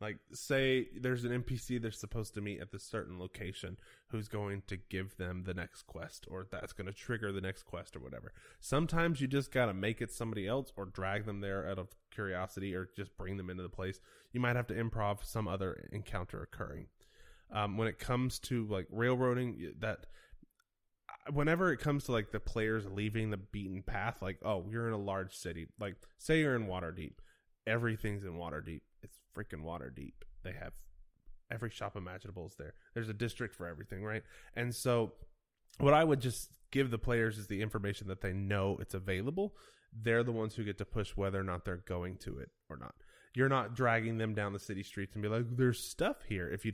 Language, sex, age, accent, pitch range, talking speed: English, male, 20-39, American, 95-115 Hz, 210 wpm